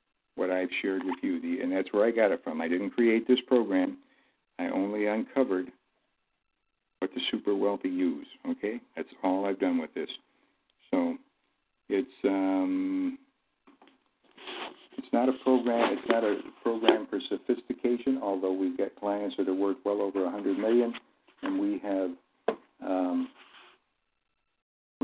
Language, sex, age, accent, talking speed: English, male, 60-79, American, 150 wpm